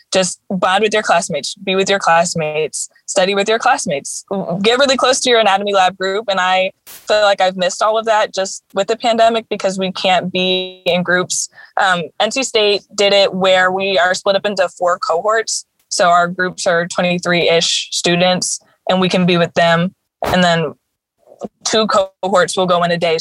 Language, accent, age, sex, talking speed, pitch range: English, American, 20-39, female, 190 wpm, 170-195 Hz